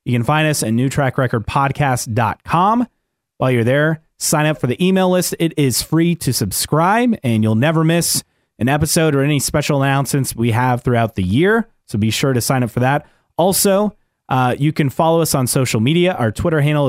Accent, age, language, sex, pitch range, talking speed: American, 30-49, English, male, 120-160 Hz, 195 wpm